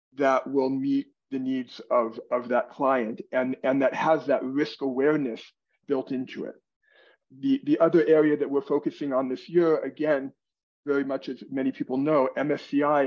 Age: 40-59